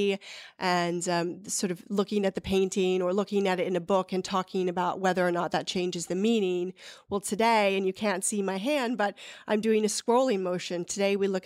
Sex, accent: female, American